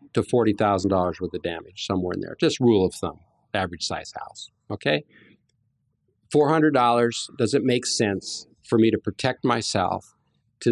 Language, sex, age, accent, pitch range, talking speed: English, male, 50-69, American, 105-135 Hz, 150 wpm